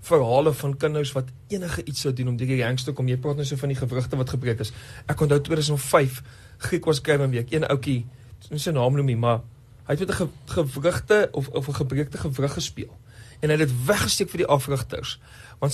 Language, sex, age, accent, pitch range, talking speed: English, male, 40-59, Dutch, 120-155 Hz, 225 wpm